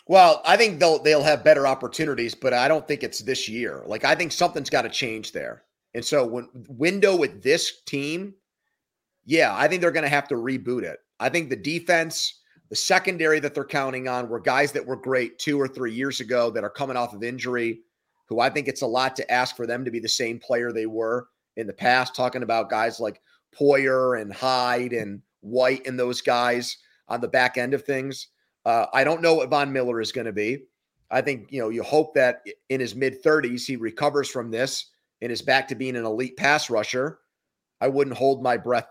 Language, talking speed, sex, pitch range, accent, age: English, 220 wpm, male, 120-150 Hz, American, 30-49